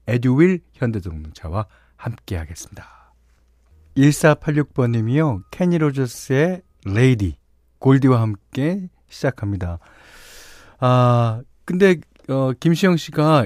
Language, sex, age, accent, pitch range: Korean, male, 40-59, native, 110-155 Hz